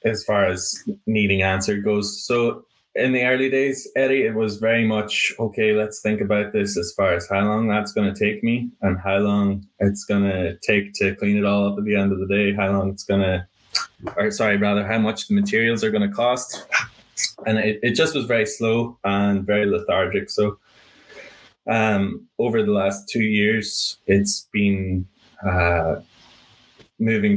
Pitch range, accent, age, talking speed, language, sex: 95-115 Hz, Irish, 20-39, 190 wpm, English, male